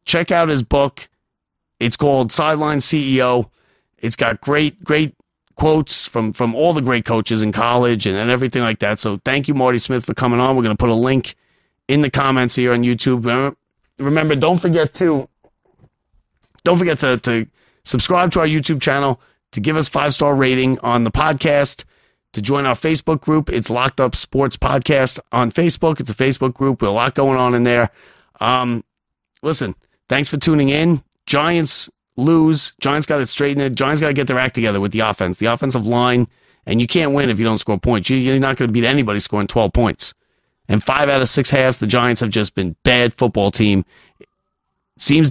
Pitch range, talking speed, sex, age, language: 115-145 Hz, 195 wpm, male, 30-49, English